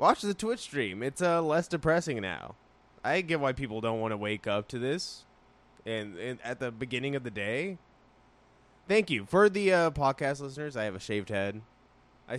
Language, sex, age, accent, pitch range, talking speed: English, male, 20-39, American, 115-155 Hz, 205 wpm